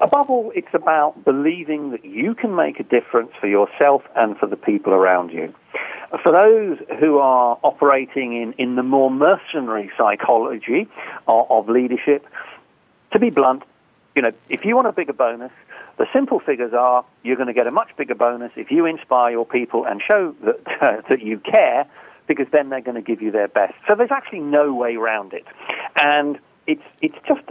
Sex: male